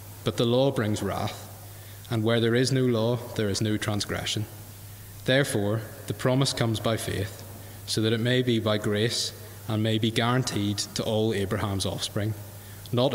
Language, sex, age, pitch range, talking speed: English, male, 20-39, 100-115 Hz, 170 wpm